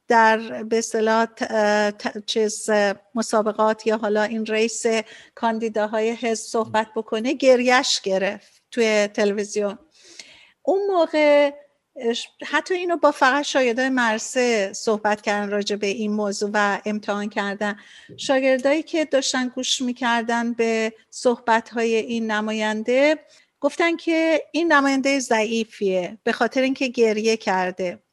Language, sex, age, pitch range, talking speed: Persian, female, 50-69, 220-260 Hz, 115 wpm